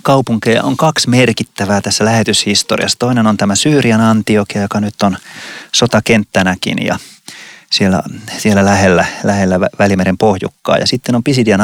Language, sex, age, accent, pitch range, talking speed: Finnish, male, 30-49, native, 100-120 Hz, 135 wpm